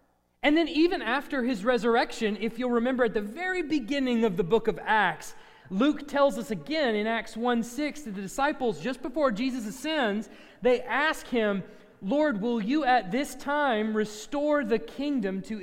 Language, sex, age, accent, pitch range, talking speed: English, male, 30-49, American, 190-280 Hz, 175 wpm